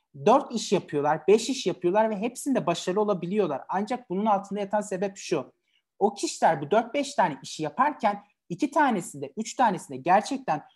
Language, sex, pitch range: Turkish, male, 170-240 Hz